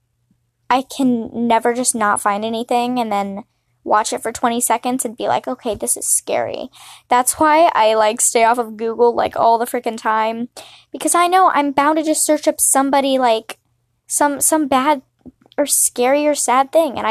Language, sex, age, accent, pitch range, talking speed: English, female, 10-29, American, 225-280 Hz, 190 wpm